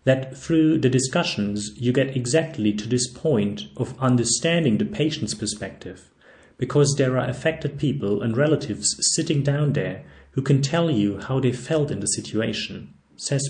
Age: 40-59